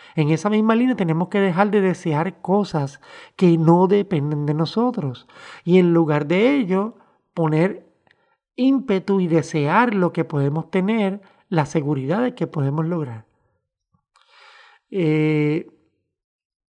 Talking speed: 125 wpm